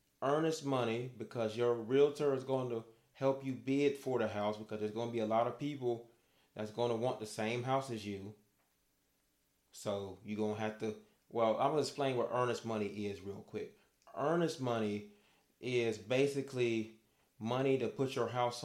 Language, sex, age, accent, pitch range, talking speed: English, male, 30-49, American, 105-135 Hz, 185 wpm